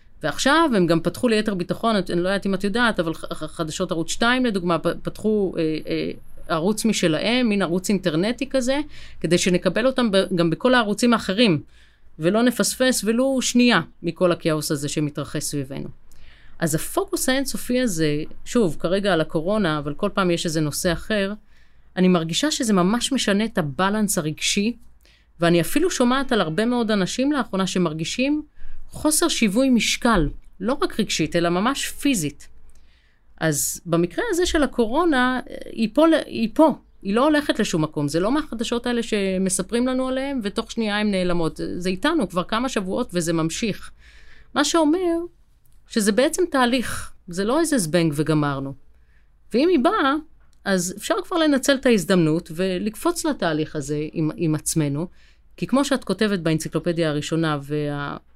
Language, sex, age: Hebrew, female, 30-49